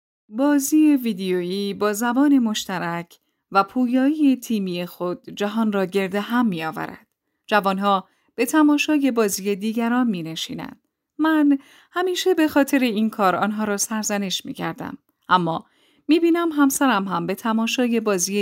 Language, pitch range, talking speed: Persian, 185-265 Hz, 125 wpm